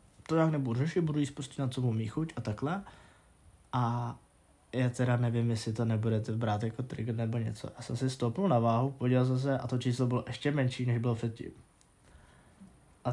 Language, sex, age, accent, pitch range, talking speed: Czech, male, 20-39, native, 115-135 Hz, 200 wpm